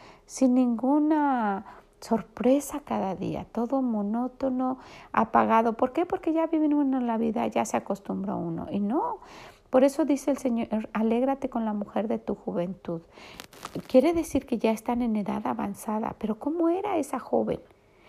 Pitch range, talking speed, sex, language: 225-285 Hz, 160 wpm, female, Spanish